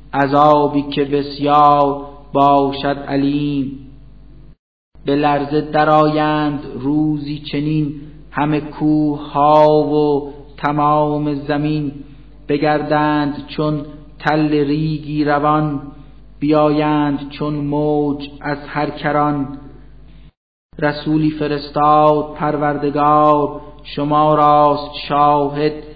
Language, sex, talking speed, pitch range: Persian, male, 75 wpm, 145-150 Hz